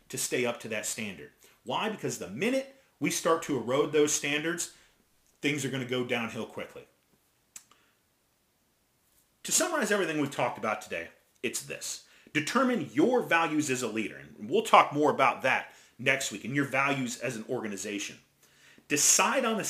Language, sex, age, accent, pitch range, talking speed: English, male, 30-49, American, 120-170 Hz, 170 wpm